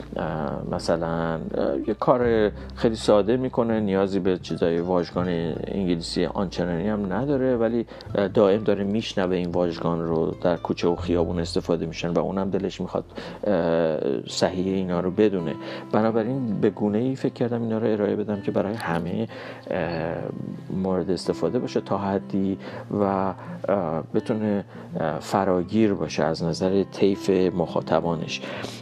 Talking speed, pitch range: 130 wpm, 90-115 Hz